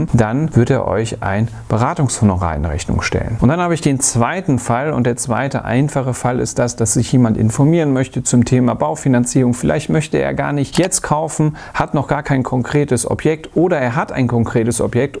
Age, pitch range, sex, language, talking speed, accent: 40-59, 115-145 Hz, male, German, 195 wpm, German